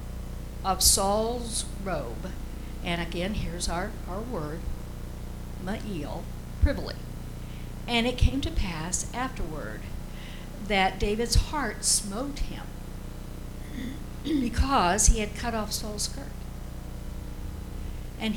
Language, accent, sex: English, American, female